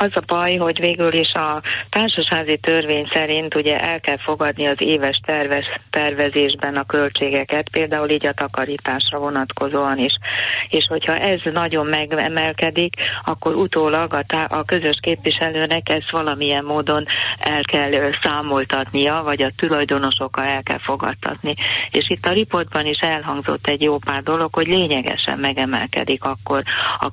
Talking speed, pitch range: 140 wpm, 140-165 Hz